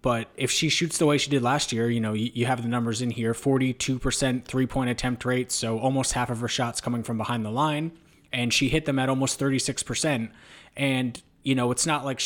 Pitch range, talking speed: 115-135 Hz, 225 wpm